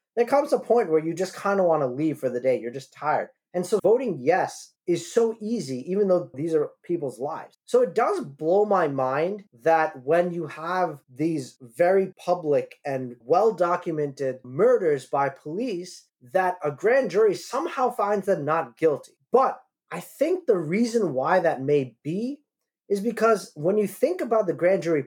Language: English